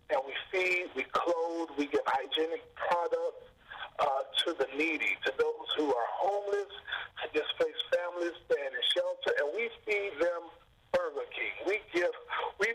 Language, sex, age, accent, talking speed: English, male, 40-59, American, 155 wpm